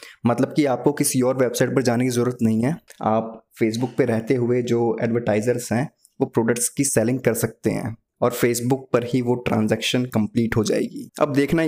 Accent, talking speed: native, 195 wpm